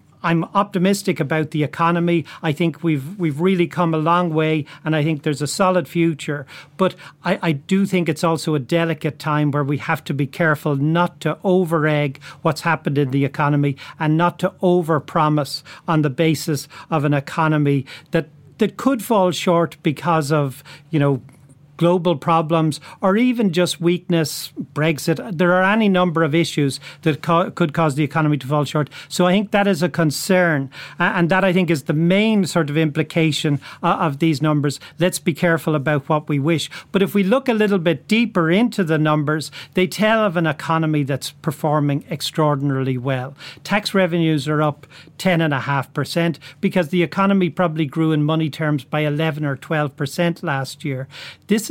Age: 40-59